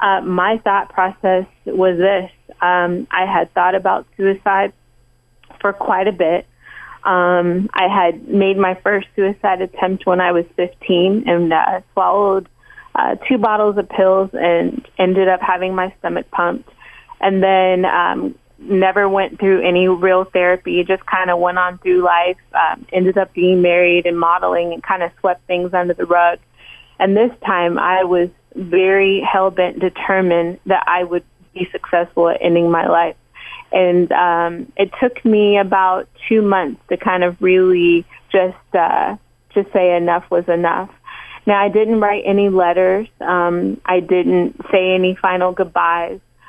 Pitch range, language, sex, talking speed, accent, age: 175-195 Hz, English, female, 160 wpm, American, 20-39